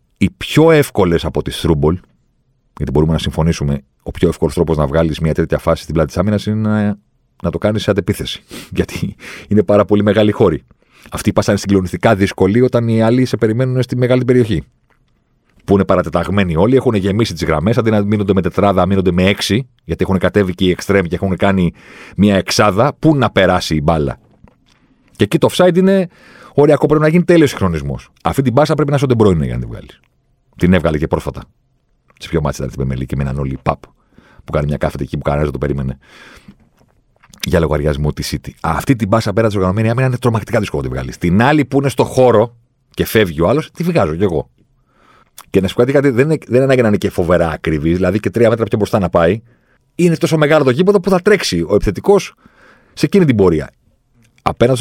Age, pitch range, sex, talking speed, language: 40-59, 85-125 Hz, male, 210 wpm, Greek